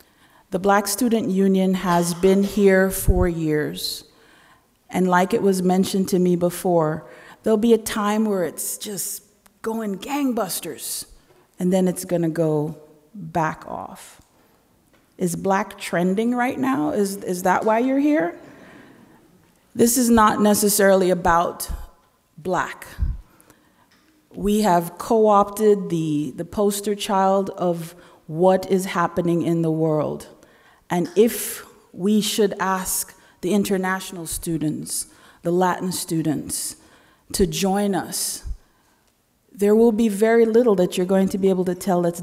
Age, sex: 40-59, female